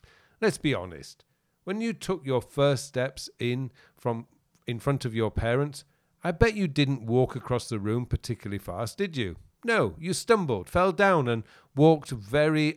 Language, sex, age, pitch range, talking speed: English, male, 50-69, 110-165 Hz, 170 wpm